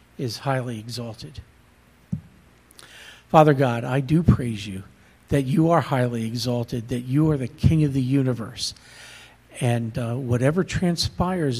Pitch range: 115-140 Hz